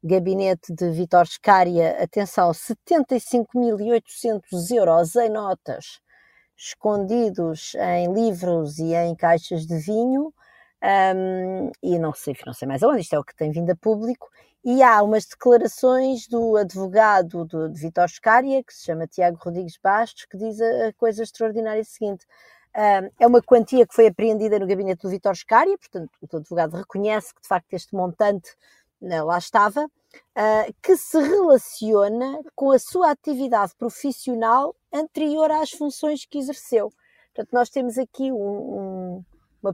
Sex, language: female, Portuguese